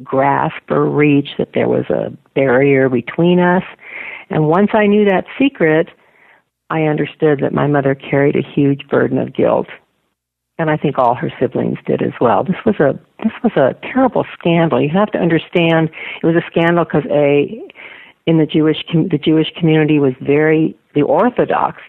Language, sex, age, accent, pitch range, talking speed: English, female, 50-69, American, 135-160 Hz, 180 wpm